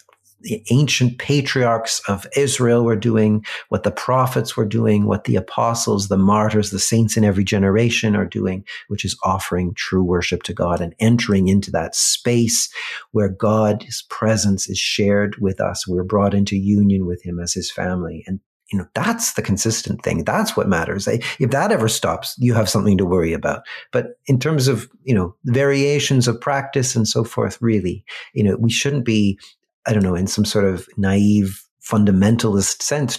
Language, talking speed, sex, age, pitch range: English, 180 wpm, male, 50-69, 95-115 Hz